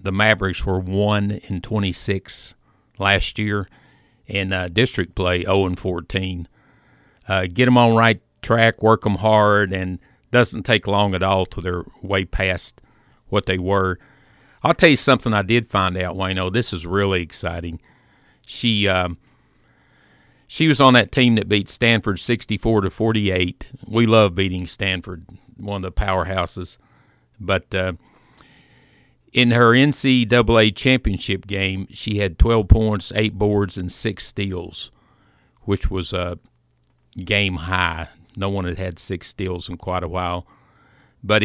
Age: 50-69